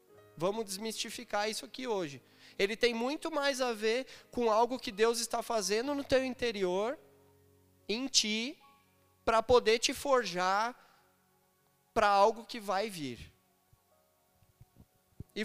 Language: Portuguese